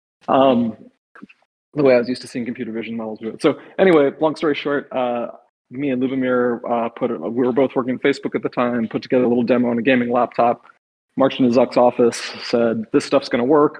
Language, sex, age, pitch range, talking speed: English, male, 30-49, 115-135 Hz, 220 wpm